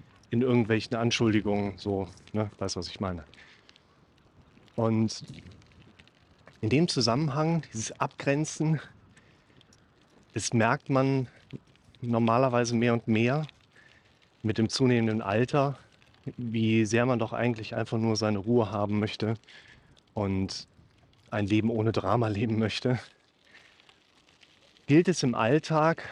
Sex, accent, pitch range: male, German, 110-135 Hz